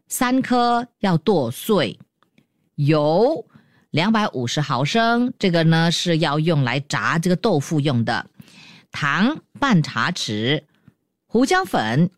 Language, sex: Chinese, female